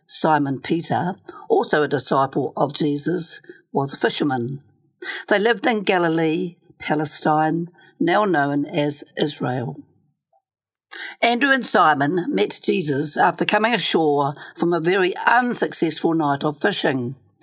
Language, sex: English, female